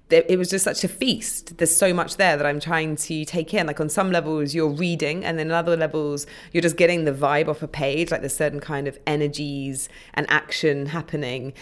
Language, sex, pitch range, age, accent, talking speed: English, female, 145-180 Hz, 20-39, British, 220 wpm